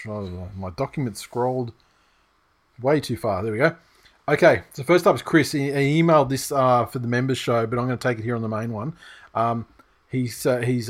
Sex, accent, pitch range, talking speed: male, Australian, 115-140 Hz, 195 wpm